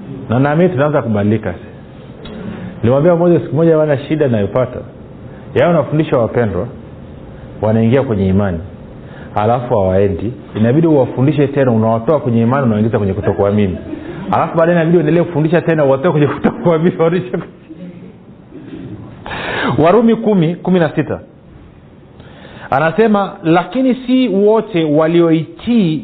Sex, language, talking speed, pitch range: male, Swahili, 115 wpm, 115-170 Hz